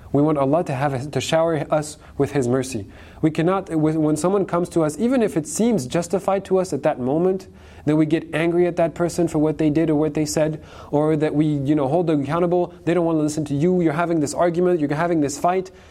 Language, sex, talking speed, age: English, male, 250 wpm, 20-39